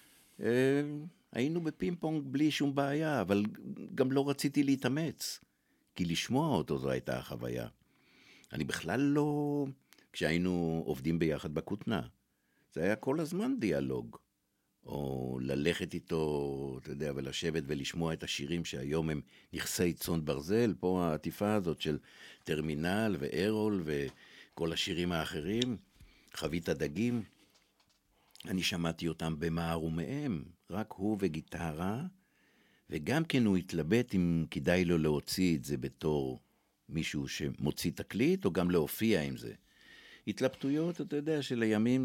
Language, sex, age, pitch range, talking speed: Hebrew, male, 60-79, 75-120 Hz, 120 wpm